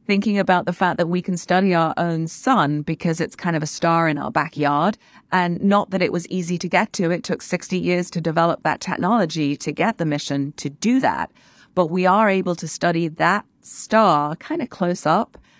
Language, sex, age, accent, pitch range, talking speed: English, female, 40-59, British, 165-200 Hz, 215 wpm